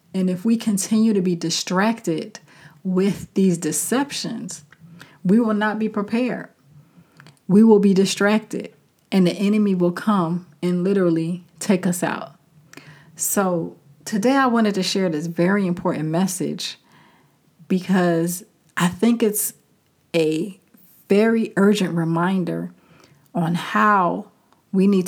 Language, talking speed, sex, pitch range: English, 120 wpm, female, 165-195 Hz